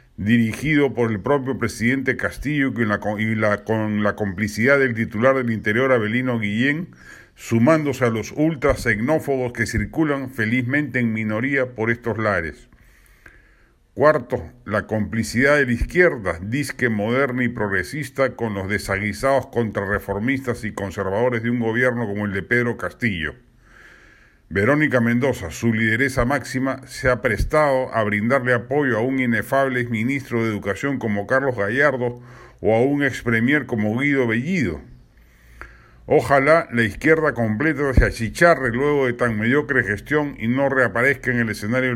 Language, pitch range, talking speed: Spanish, 110-135 Hz, 140 wpm